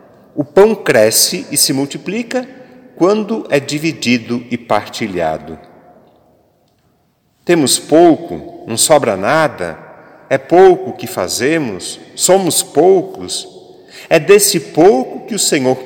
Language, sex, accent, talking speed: Portuguese, male, Brazilian, 110 wpm